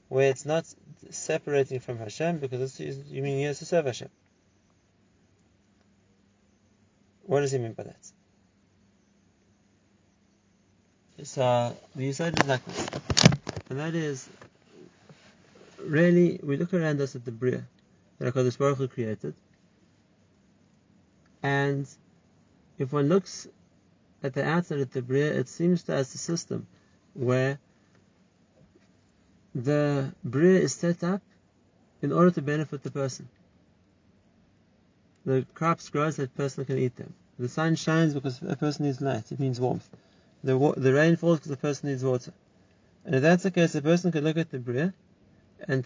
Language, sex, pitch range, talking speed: English, male, 125-160 Hz, 150 wpm